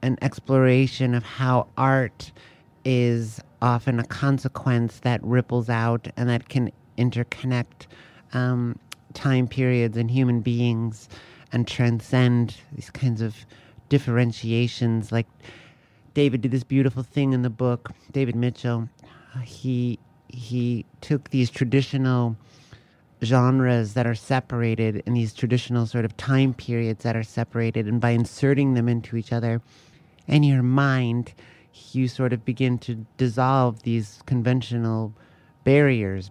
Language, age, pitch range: English, 50-69, 115-130 Hz